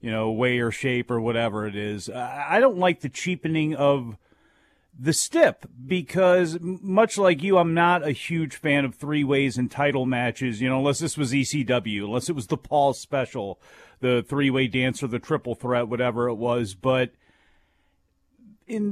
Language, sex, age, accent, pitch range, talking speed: English, male, 40-59, American, 135-180 Hz, 175 wpm